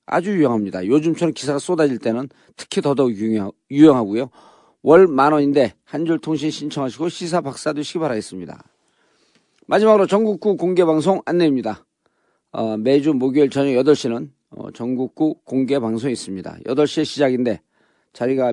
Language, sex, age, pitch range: Korean, male, 40-59, 125-165 Hz